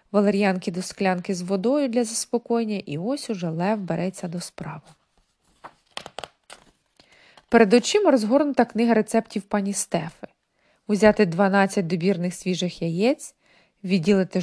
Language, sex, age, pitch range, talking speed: Ukrainian, female, 20-39, 185-240 Hz, 110 wpm